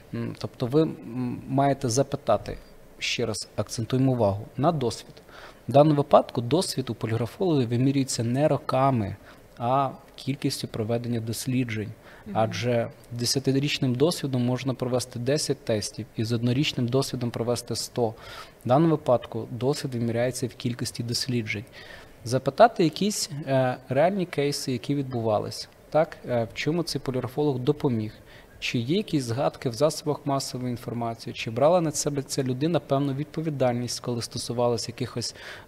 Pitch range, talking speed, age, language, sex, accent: 120-145 Hz, 125 wpm, 20-39, Ukrainian, male, native